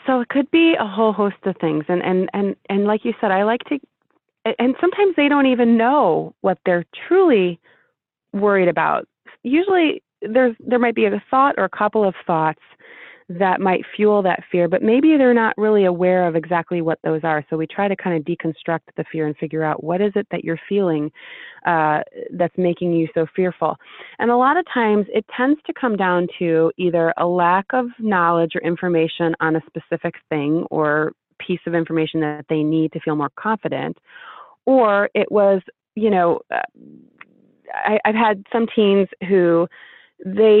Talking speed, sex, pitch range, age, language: 185 wpm, female, 165-215 Hz, 30-49, English